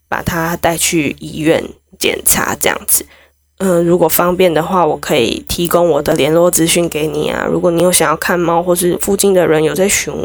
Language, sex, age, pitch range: Chinese, female, 10-29, 165-185 Hz